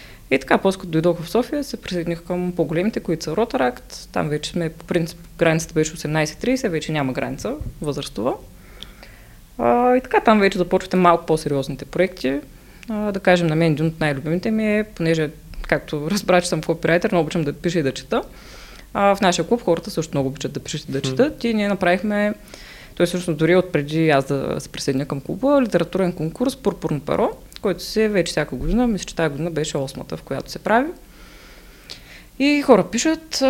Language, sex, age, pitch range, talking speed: Bulgarian, female, 20-39, 155-210 Hz, 195 wpm